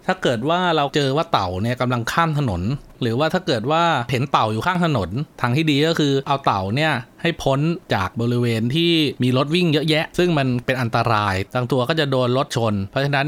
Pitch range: 115-155 Hz